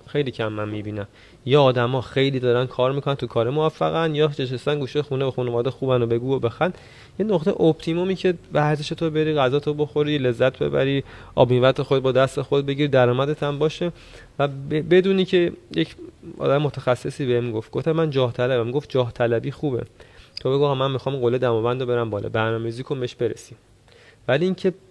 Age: 30-49